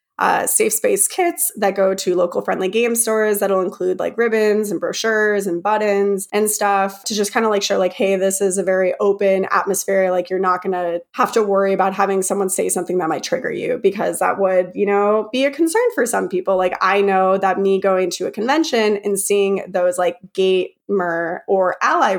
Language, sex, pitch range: English, female, 185-230 Hz